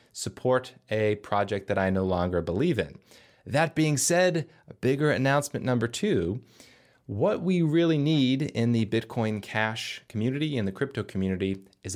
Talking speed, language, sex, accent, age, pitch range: 155 wpm, English, male, American, 30-49, 100-130 Hz